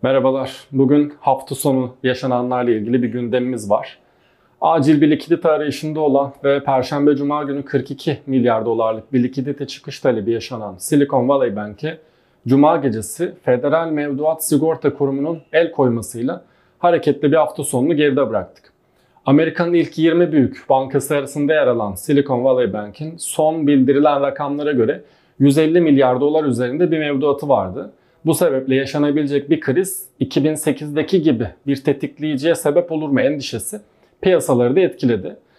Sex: male